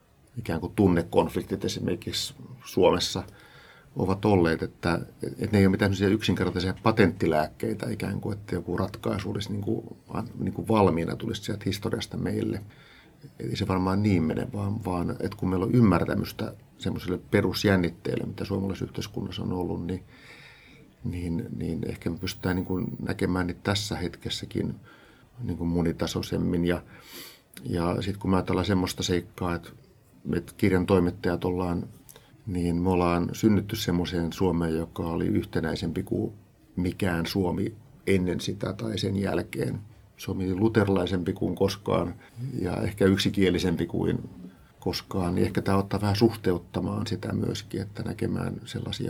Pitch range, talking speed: 90-110 Hz, 140 wpm